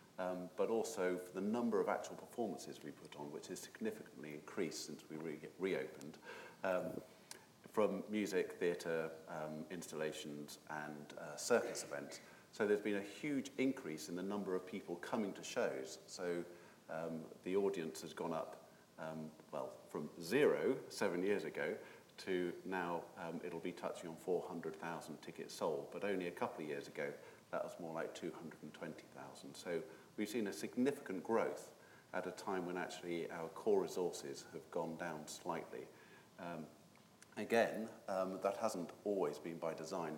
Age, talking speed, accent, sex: 40-59, 155 wpm, British, male